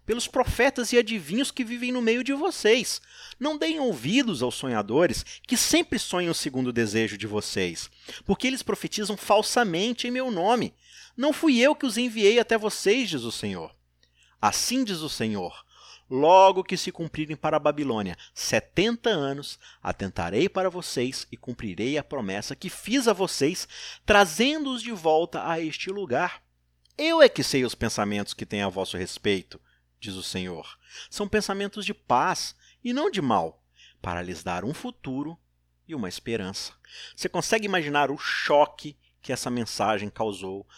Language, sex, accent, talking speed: Portuguese, male, Brazilian, 160 wpm